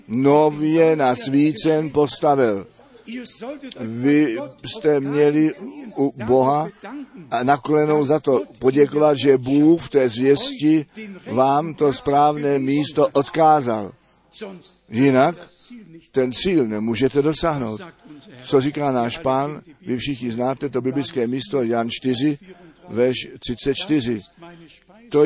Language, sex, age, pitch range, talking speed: Czech, male, 50-69, 130-165 Hz, 100 wpm